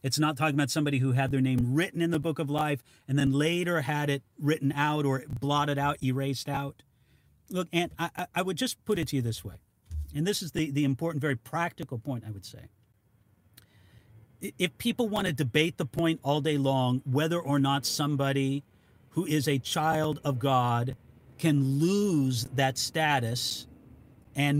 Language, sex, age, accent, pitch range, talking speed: English, male, 40-59, American, 120-170 Hz, 185 wpm